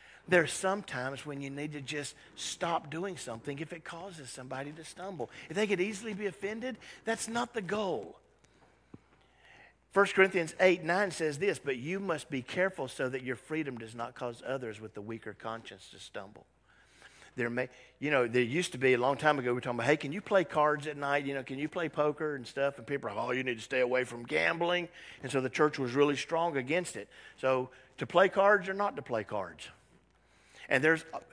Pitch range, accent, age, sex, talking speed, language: 125-185 Hz, American, 50-69, male, 220 wpm, English